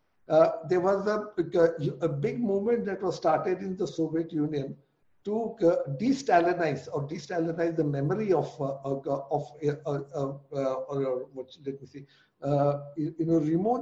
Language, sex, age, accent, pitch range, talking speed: English, male, 60-79, Indian, 145-175 Hz, 165 wpm